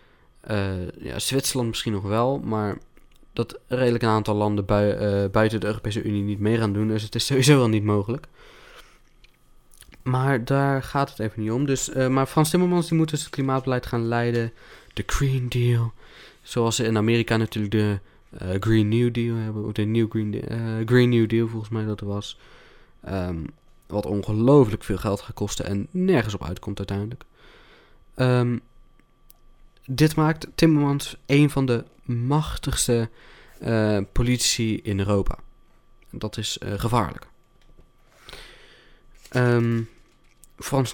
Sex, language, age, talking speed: male, Dutch, 20-39, 140 wpm